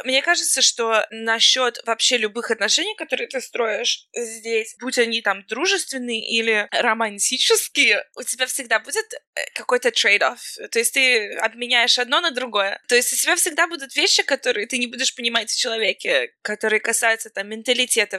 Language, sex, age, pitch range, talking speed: Russian, female, 20-39, 220-280 Hz, 160 wpm